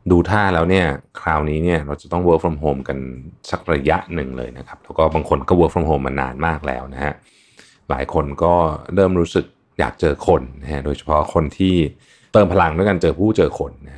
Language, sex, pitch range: Thai, male, 75-105 Hz